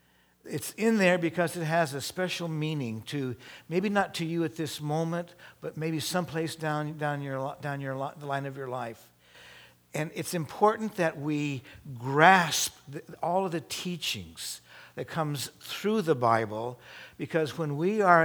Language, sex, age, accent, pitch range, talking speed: English, male, 60-79, American, 125-165 Hz, 165 wpm